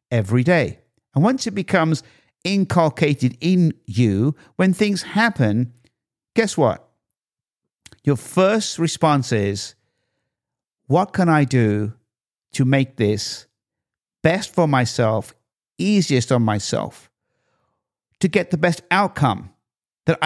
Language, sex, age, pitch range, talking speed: English, male, 50-69, 115-165 Hz, 110 wpm